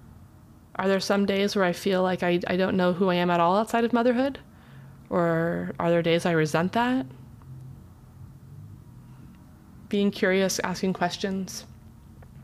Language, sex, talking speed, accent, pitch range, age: English, female, 150 wpm, American, 165-190 Hz, 20-39